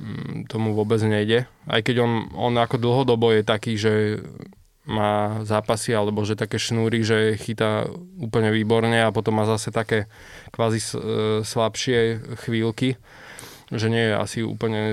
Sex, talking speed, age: male, 140 wpm, 20-39